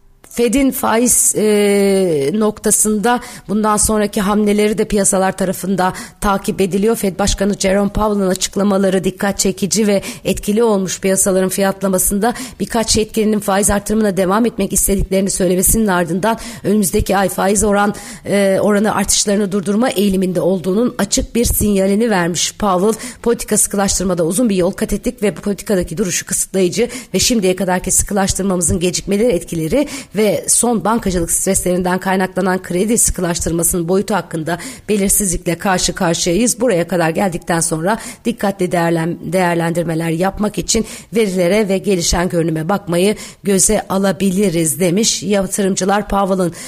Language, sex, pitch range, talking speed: Turkish, female, 180-210 Hz, 125 wpm